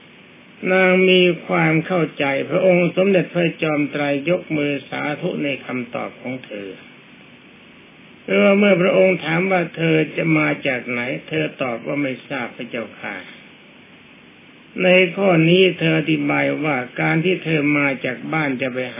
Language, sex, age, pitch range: Thai, male, 60-79, 140-175 Hz